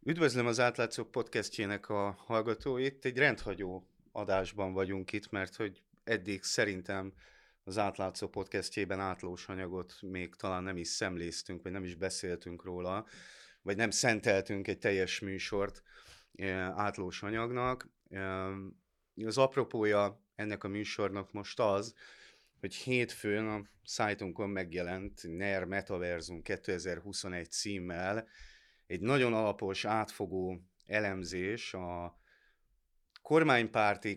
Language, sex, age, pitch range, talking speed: Hungarian, male, 30-49, 90-105 Hz, 105 wpm